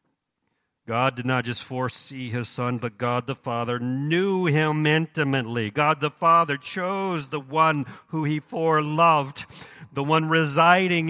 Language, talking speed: English, 140 wpm